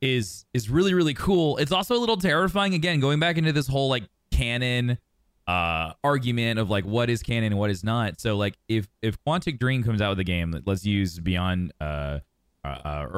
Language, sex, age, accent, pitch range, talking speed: English, male, 20-39, American, 95-125 Hz, 210 wpm